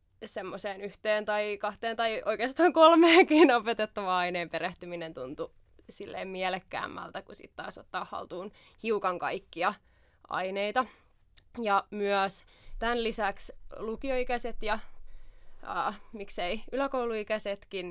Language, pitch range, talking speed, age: Finnish, 190-225 Hz, 100 wpm, 20-39